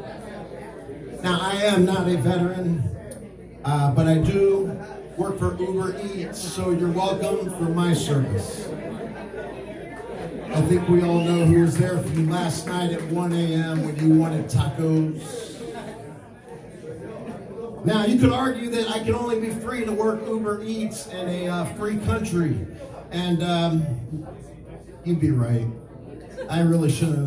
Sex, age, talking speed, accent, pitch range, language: male, 40-59, 145 wpm, American, 145-185 Hz, English